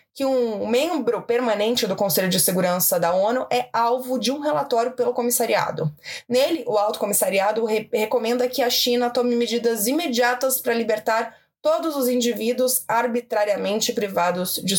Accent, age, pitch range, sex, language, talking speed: Brazilian, 20-39, 220-270 Hz, female, Portuguese, 145 wpm